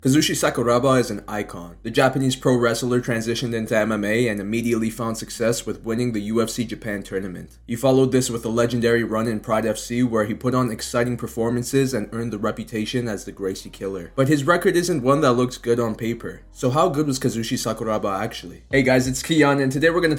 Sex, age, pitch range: male, 20-39, 110-130 Hz